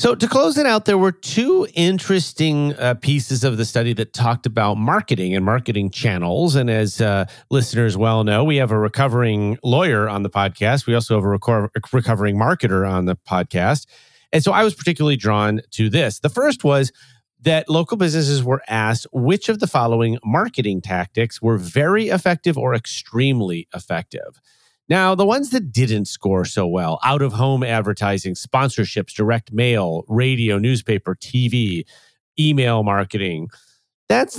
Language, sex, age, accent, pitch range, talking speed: English, male, 40-59, American, 110-150 Hz, 165 wpm